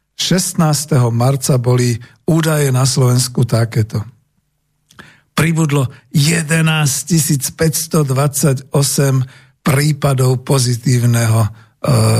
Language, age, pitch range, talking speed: Slovak, 50-69, 120-155 Hz, 60 wpm